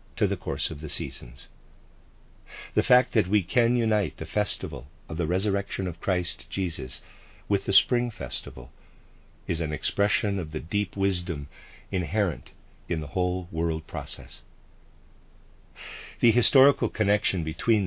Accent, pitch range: American, 80-100 Hz